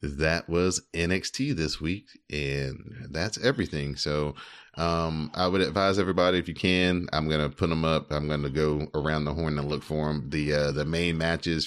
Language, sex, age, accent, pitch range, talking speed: English, male, 30-49, American, 70-80 Hz, 200 wpm